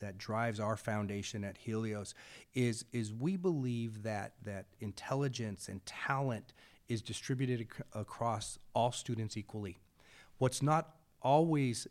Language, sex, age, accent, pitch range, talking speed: English, male, 30-49, American, 115-135 Hz, 120 wpm